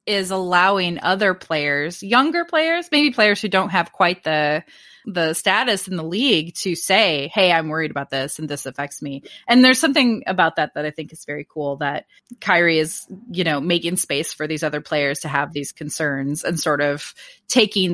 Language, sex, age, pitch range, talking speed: English, female, 20-39, 155-235 Hz, 195 wpm